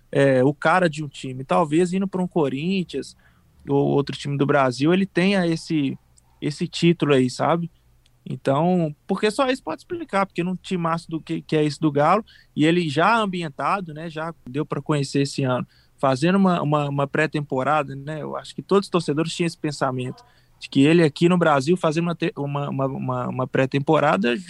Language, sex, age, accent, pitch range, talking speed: Portuguese, male, 20-39, Brazilian, 145-180 Hz, 190 wpm